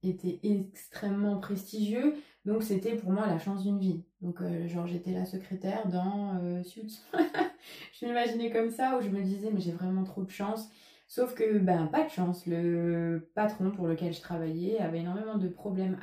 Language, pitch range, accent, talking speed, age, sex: French, 175-205 Hz, French, 185 wpm, 20-39, female